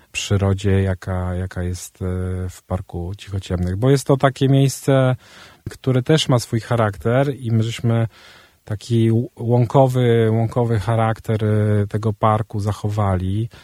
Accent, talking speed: native, 115 wpm